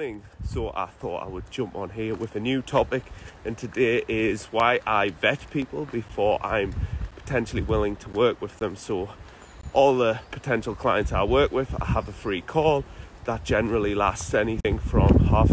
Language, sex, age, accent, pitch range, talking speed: English, male, 30-49, British, 100-125 Hz, 180 wpm